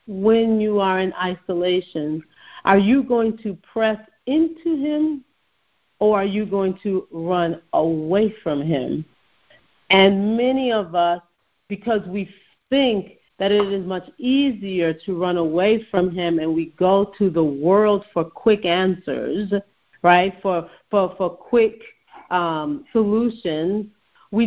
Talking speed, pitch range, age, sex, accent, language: 135 wpm, 180-225 Hz, 40-59, female, American, English